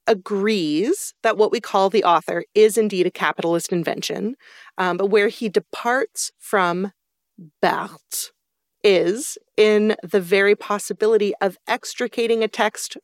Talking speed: 130 wpm